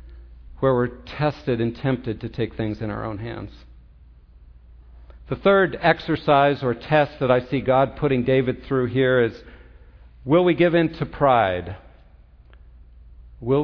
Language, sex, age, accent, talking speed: English, male, 50-69, American, 145 wpm